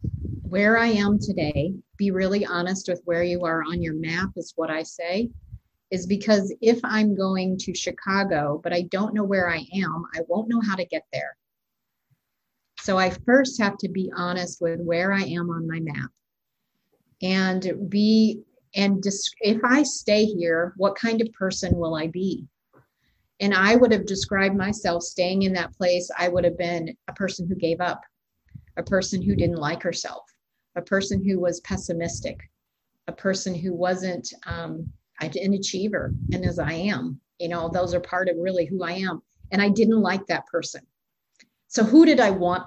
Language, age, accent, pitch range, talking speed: English, 40-59, American, 175-200 Hz, 180 wpm